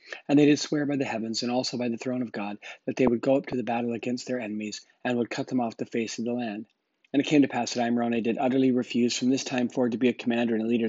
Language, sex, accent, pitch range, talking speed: English, male, American, 115-130 Hz, 315 wpm